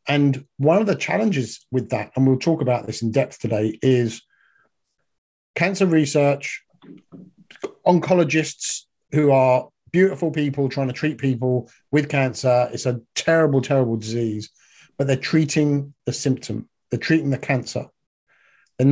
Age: 50-69